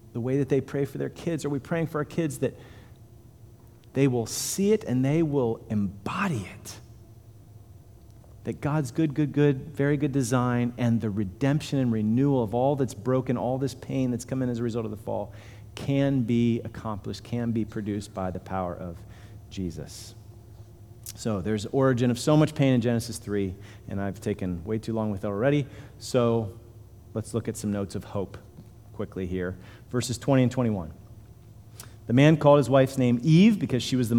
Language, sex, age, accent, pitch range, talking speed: English, male, 40-59, American, 110-135 Hz, 190 wpm